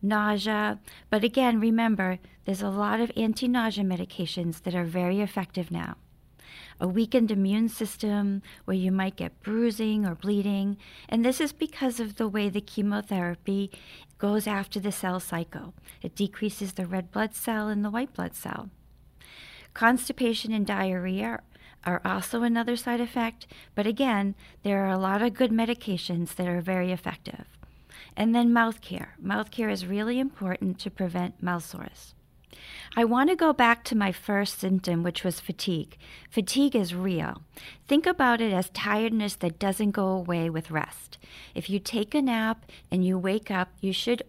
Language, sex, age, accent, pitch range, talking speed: English, female, 40-59, American, 185-225 Hz, 165 wpm